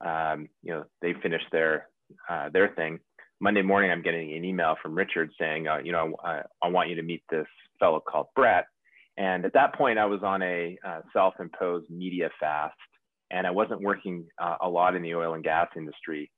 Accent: American